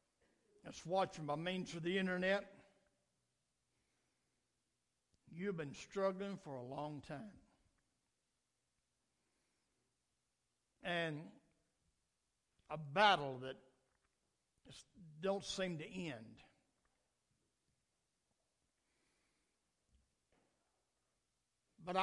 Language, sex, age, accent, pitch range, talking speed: English, male, 60-79, American, 160-215 Hz, 65 wpm